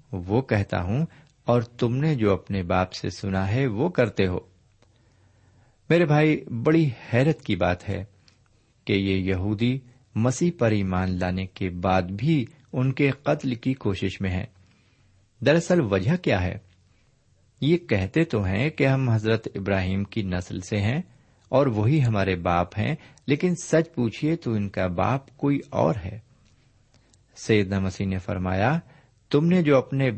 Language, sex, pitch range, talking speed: Urdu, male, 100-135 Hz, 155 wpm